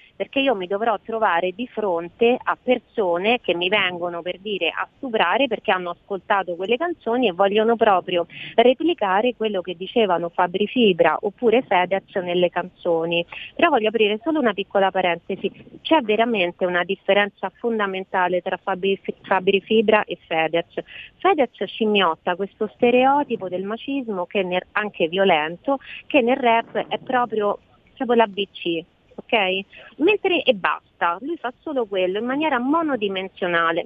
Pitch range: 185-245 Hz